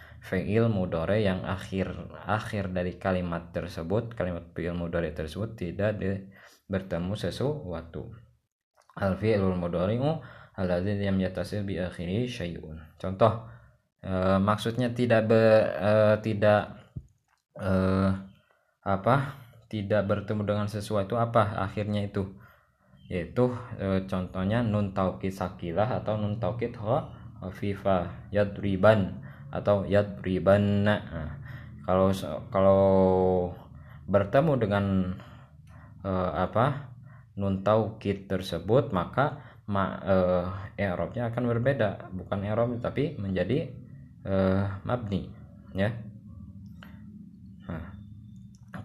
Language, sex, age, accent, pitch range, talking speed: Indonesian, male, 20-39, native, 95-110 Hz, 95 wpm